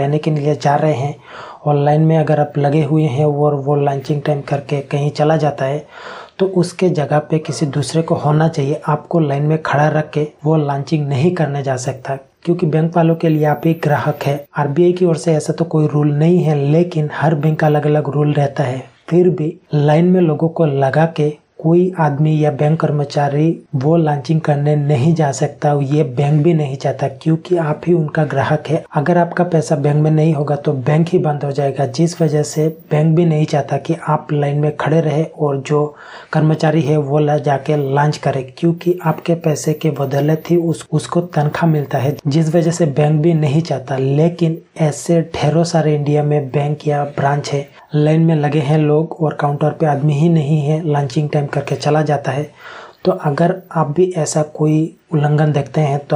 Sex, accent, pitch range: male, native, 145-160 Hz